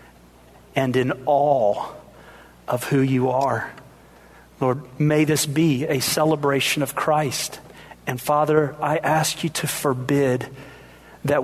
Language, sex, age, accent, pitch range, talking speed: English, male, 40-59, American, 140-170 Hz, 120 wpm